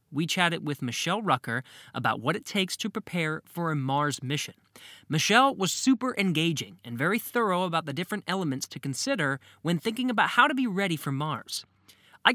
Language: English